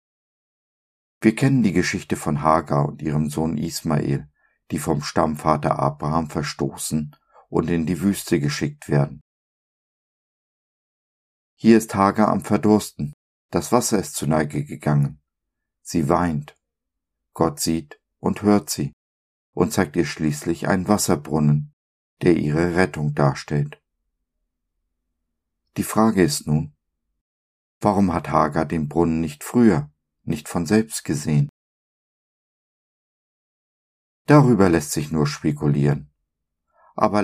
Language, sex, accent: German, male, German